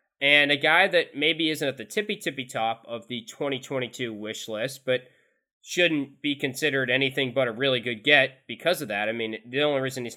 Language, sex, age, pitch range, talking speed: English, male, 20-39, 115-145 Hz, 200 wpm